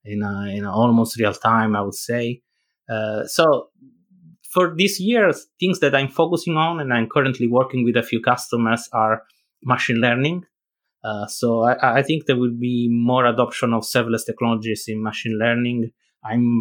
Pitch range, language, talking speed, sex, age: 110-130 Hz, English, 175 wpm, male, 30-49